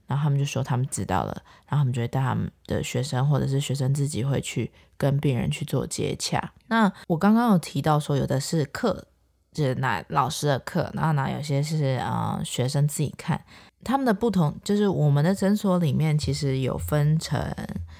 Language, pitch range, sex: Chinese, 140-175 Hz, female